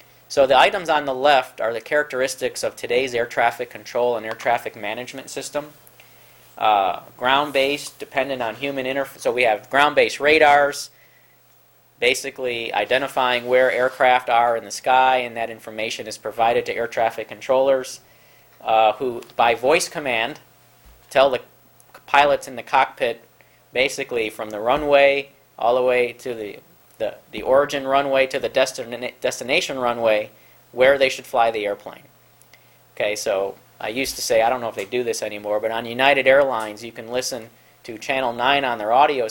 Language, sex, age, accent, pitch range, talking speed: English, male, 40-59, American, 110-140 Hz, 165 wpm